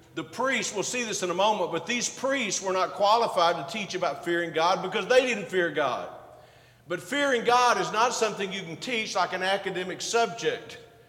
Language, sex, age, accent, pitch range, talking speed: English, male, 50-69, American, 175-230 Hz, 200 wpm